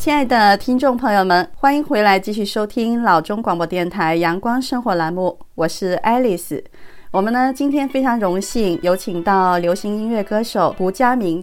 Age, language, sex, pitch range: 30-49, Chinese, female, 185-245 Hz